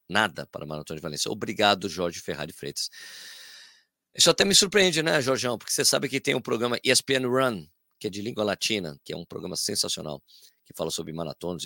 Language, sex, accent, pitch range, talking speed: Portuguese, male, Brazilian, 90-125 Hz, 200 wpm